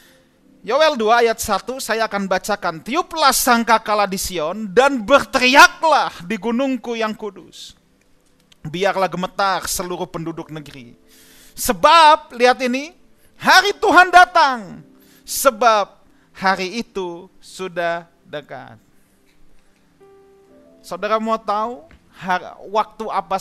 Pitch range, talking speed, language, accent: 150-215 Hz, 95 wpm, Indonesian, native